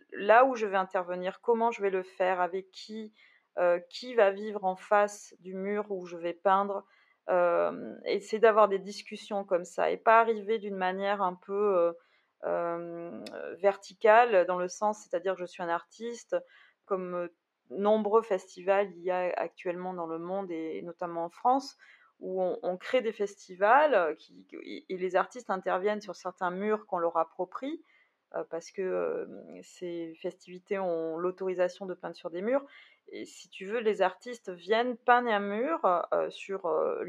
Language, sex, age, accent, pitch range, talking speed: French, female, 30-49, French, 180-220 Hz, 175 wpm